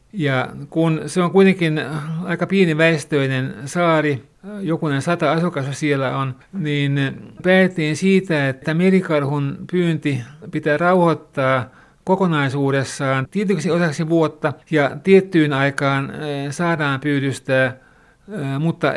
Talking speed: 100 wpm